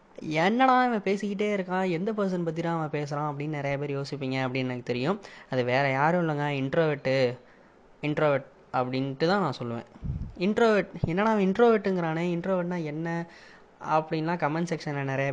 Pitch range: 140-185 Hz